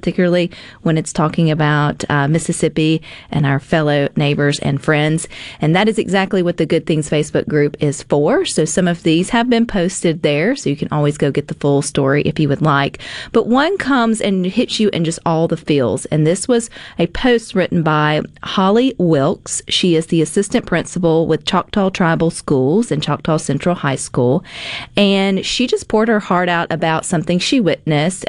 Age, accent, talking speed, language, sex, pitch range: 40-59, American, 195 wpm, English, female, 150-200 Hz